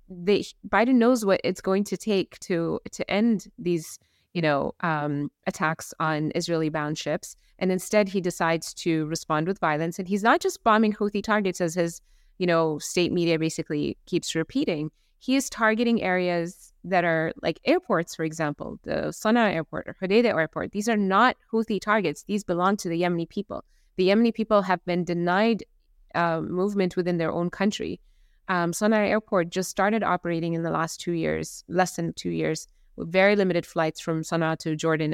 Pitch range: 160-195 Hz